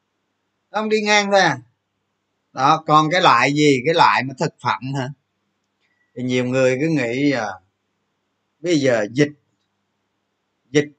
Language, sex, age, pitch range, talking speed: Vietnamese, male, 20-39, 115-185 Hz, 145 wpm